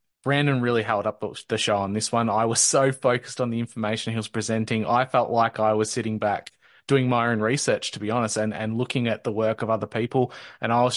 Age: 20-39